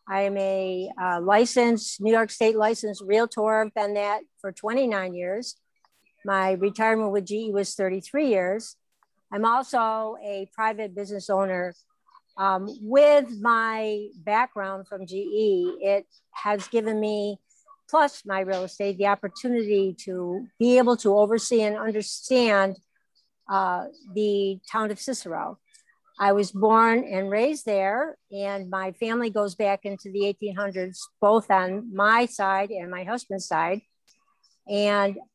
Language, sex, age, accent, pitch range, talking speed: English, female, 60-79, American, 195-230 Hz, 135 wpm